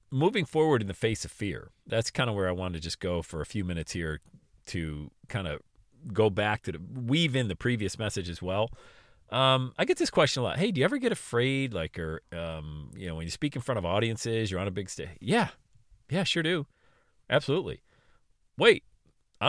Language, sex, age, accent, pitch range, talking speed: English, male, 40-59, American, 95-145 Hz, 220 wpm